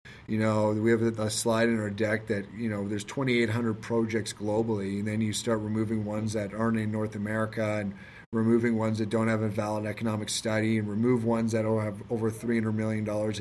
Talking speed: 210 wpm